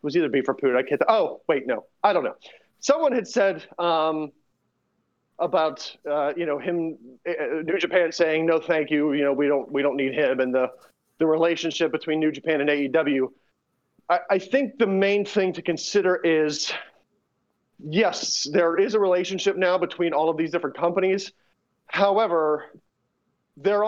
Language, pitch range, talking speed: English, 155-200 Hz, 175 wpm